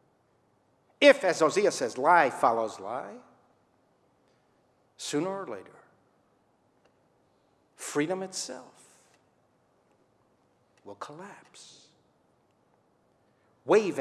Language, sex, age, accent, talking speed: English, male, 60-79, American, 65 wpm